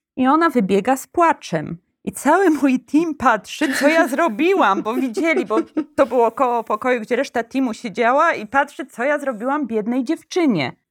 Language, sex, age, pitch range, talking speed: Polish, female, 20-39, 225-310 Hz, 170 wpm